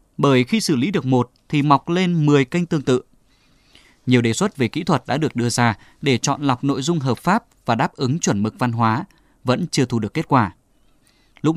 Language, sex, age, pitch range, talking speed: Vietnamese, male, 20-39, 120-155 Hz, 230 wpm